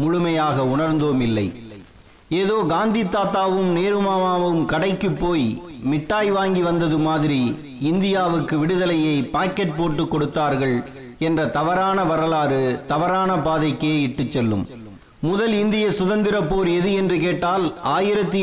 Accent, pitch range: native, 150-185 Hz